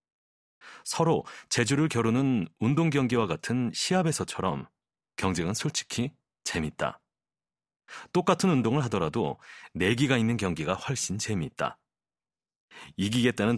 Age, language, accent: 40-59, Korean, native